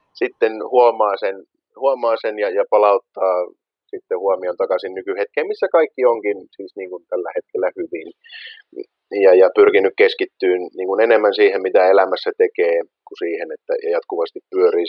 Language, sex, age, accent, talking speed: Finnish, male, 30-49, native, 135 wpm